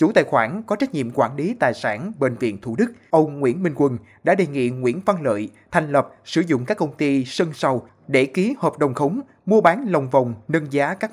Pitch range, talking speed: 130-190 Hz, 245 wpm